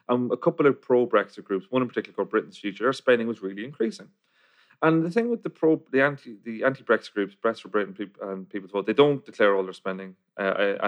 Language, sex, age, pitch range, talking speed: English, male, 30-49, 105-145 Hz, 245 wpm